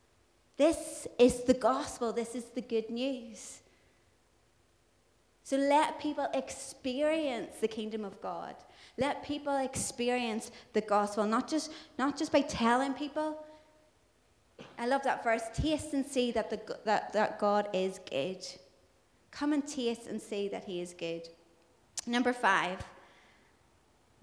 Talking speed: 130 wpm